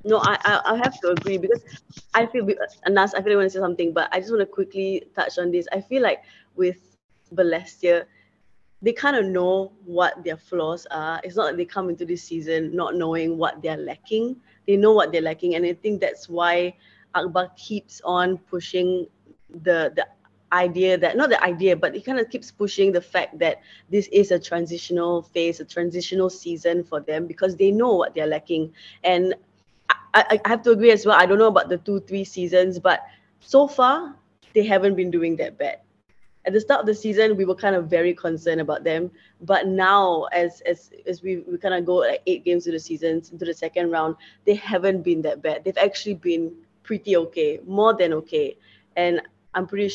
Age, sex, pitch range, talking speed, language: 20-39, female, 170-200 Hz, 210 wpm, English